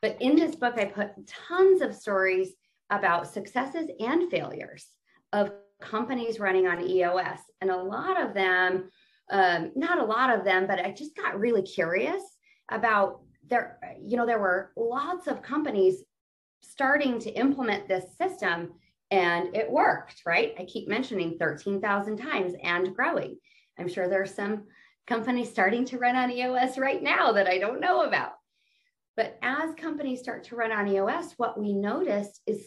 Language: English